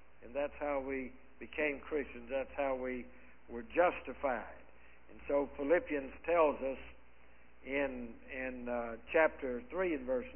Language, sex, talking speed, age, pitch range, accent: English, male, 135 wpm, 60-79, 130-170 Hz, American